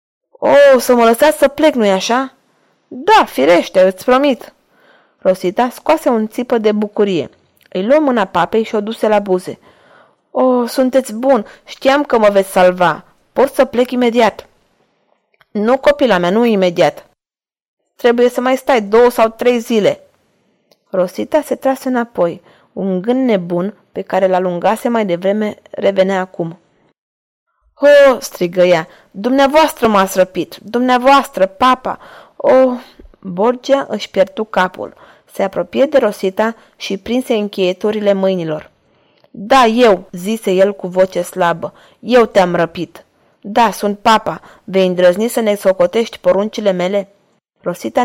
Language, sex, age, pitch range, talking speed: Romanian, female, 20-39, 190-250 Hz, 135 wpm